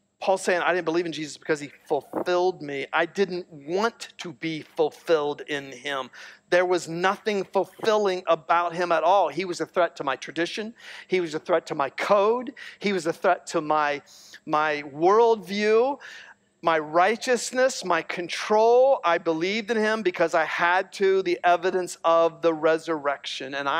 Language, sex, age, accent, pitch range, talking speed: English, male, 40-59, American, 165-215 Hz, 170 wpm